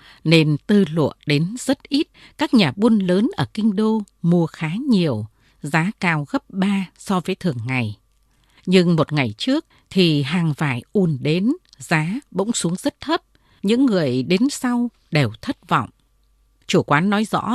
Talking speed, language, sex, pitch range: 170 wpm, Vietnamese, female, 150-220 Hz